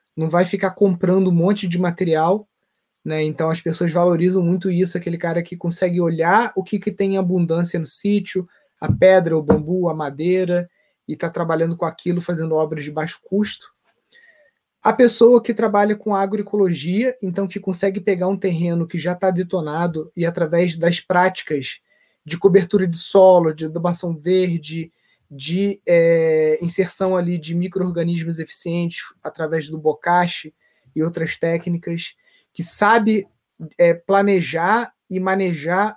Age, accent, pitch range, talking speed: 20-39, Brazilian, 170-200 Hz, 145 wpm